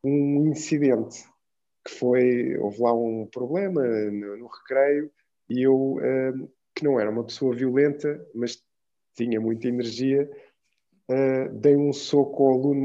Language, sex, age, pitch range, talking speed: English, male, 20-39, 125-150 Hz, 130 wpm